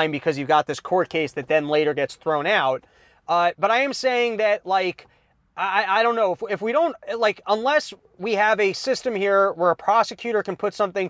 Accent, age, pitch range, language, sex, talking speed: American, 30-49, 175-220 Hz, English, male, 215 wpm